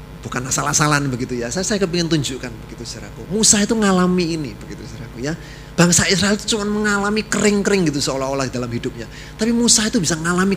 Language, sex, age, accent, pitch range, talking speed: Indonesian, male, 30-49, native, 140-170 Hz, 180 wpm